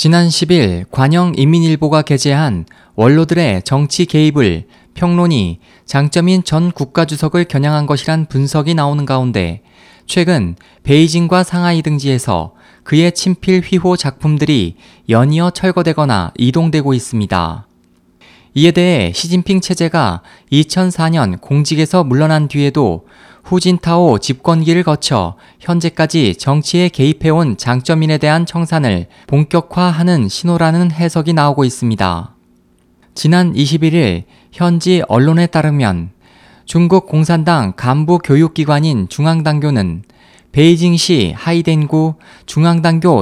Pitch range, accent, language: 130-170 Hz, native, Korean